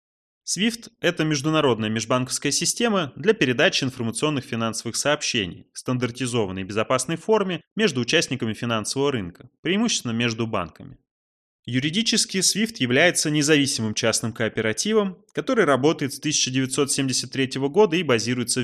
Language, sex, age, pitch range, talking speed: Russian, male, 20-39, 115-155 Hz, 110 wpm